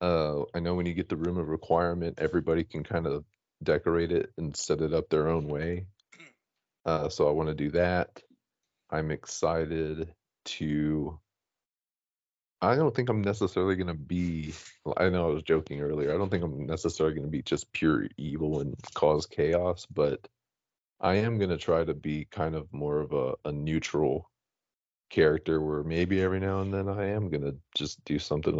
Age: 30-49